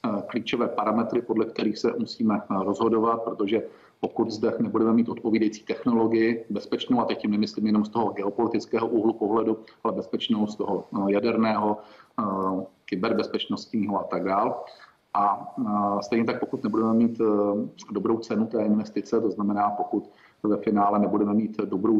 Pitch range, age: 105-115 Hz, 40-59